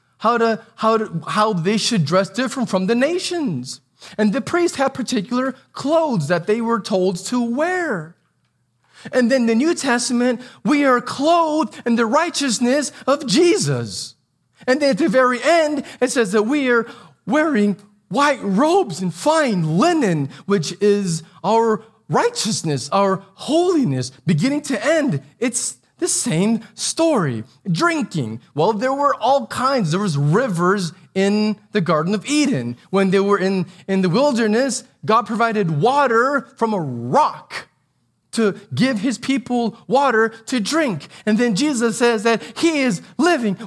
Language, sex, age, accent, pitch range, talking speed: English, male, 30-49, American, 195-275 Hz, 150 wpm